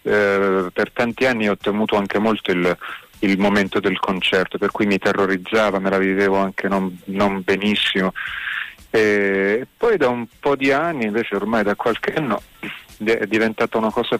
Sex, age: male, 30-49